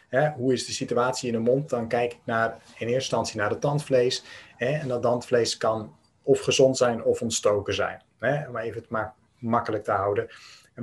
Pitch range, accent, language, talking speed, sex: 120-135 Hz, Dutch, Dutch, 215 wpm, male